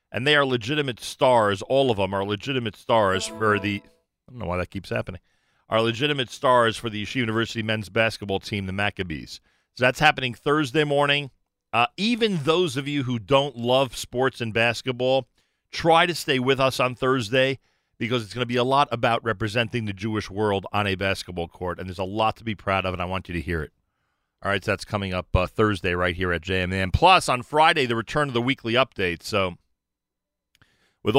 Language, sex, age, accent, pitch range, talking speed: English, male, 40-59, American, 100-135 Hz, 210 wpm